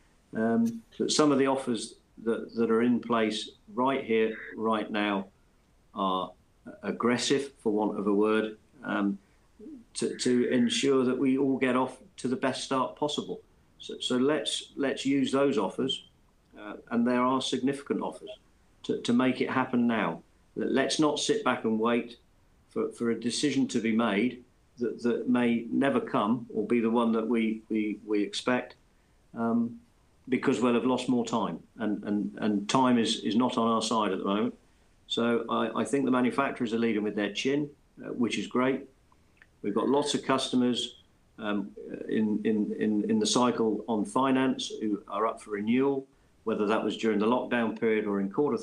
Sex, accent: male, British